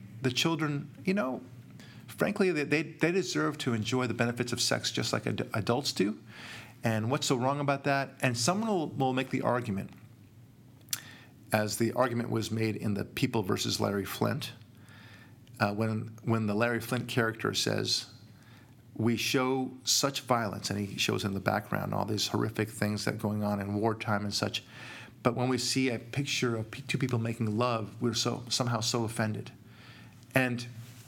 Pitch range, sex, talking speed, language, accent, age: 115-130 Hz, male, 175 wpm, English, American, 50-69